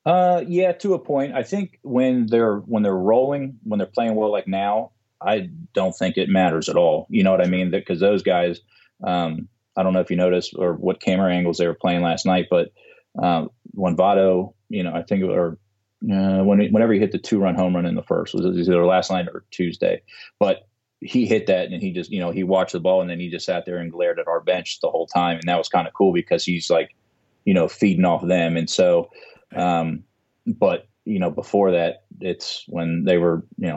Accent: American